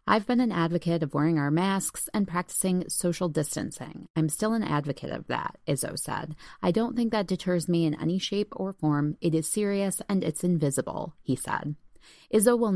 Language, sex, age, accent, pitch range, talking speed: English, female, 30-49, American, 160-205 Hz, 195 wpm